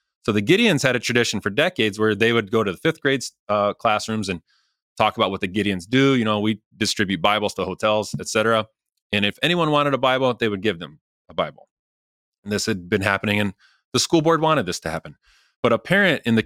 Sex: male